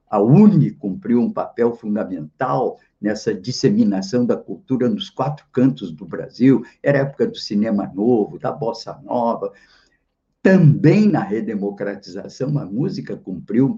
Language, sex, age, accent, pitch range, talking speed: Portuguese, male, 60-79, Brazilian, 130-175 Hz, 135 wpm